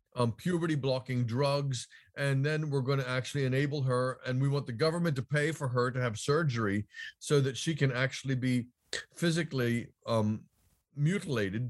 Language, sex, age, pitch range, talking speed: English, male, 40-59, 125-150 Hz, 170 wpm